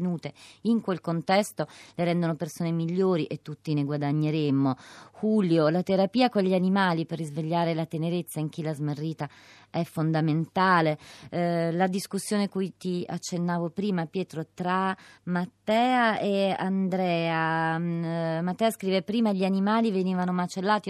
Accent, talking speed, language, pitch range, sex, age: native, 135 wpm, Italian, 155-185 Hz, female, 30-49